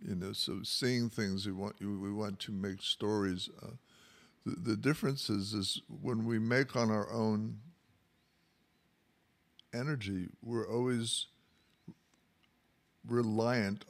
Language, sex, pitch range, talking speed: English, male, 95-110 Hz, 120 wpm